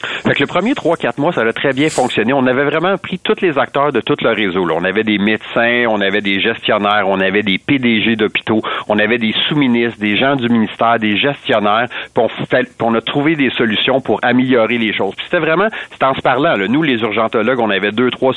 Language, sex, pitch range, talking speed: French, male, 110-135 Hz, 240 wpm